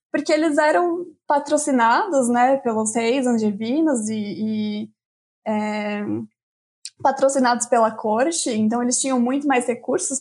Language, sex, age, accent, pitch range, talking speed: Portuguese, female, 20-39, Brazilian, 230-290 Hz, 120 wpm